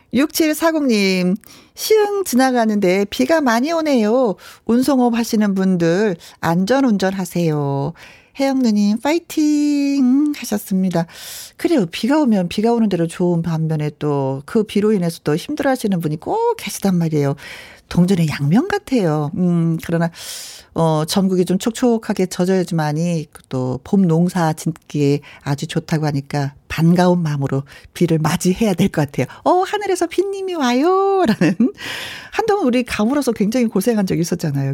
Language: Korean